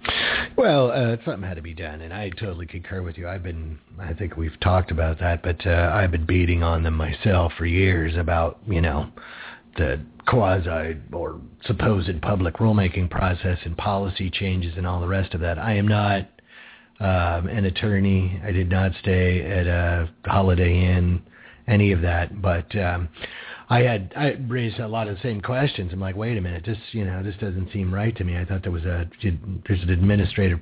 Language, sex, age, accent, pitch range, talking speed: English, male, 40-59, American, 85-105 Hz, 195 wpm